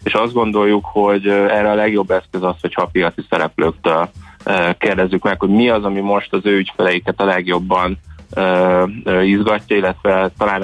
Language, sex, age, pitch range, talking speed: Hungarian, male, 20-39, 90-105 Hz, 150 wpm